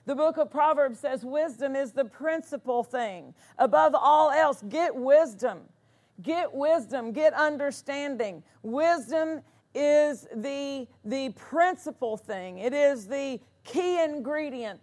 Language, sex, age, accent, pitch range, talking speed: English, female, 50-69, American, 225-280 Hz, 120 wpm